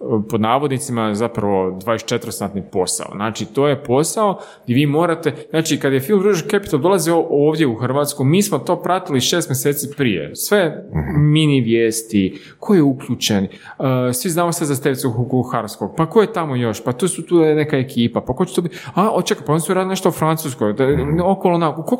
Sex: male